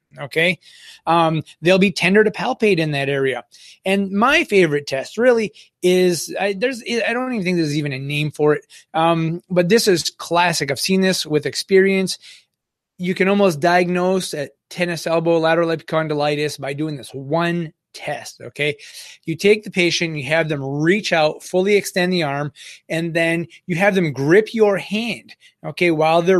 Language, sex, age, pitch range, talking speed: English, male, 30-49, 150-185 Hz, 175 wpm